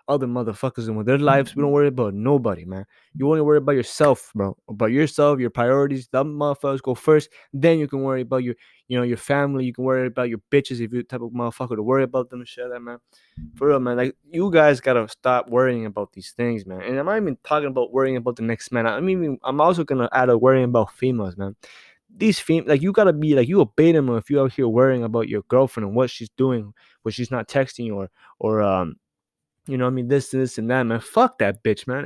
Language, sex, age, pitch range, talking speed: English, male, 20-39, 120-145 Hz, 260 wpm